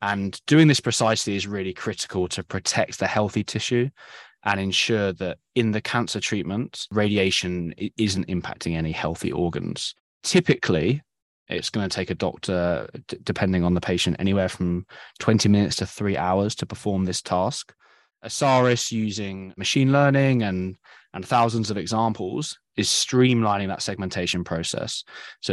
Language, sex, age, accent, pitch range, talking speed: English, male, 20-39, British, 95-115 Hz, 145 wpm